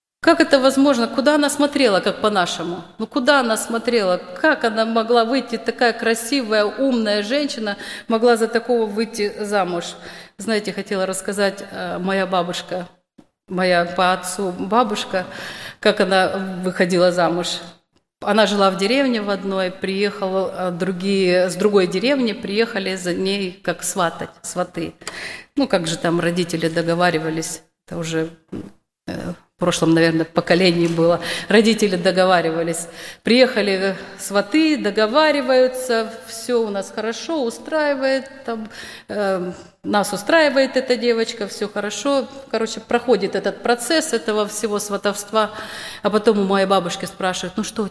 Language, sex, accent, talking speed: Russian, female, native, 125 wpm